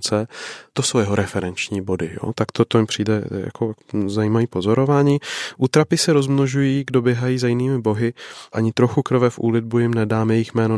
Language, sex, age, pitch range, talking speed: Czech, male, 20-39, 105-120 Hz, 165 wpm